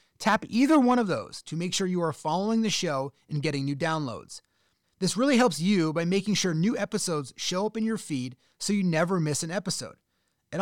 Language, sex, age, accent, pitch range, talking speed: English, male, 30-49, American, 155-220 Hz, 215 wpm